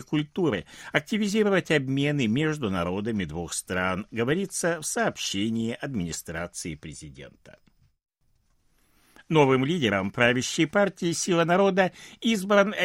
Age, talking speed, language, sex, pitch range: 60-79, 90 wpm, Russian, male, 110-170 Hz